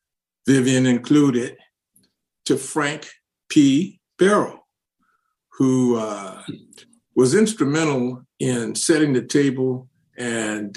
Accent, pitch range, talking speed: American, 120-150 Hz, 85 wpm